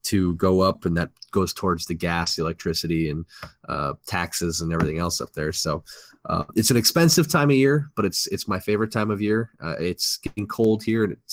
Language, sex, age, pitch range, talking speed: English, male, 20-39, 85-105 Hz, 220 wpm